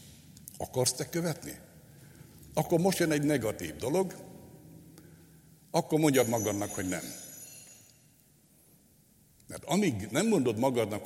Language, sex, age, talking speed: Hungarian, male, 60-79, 105 wpm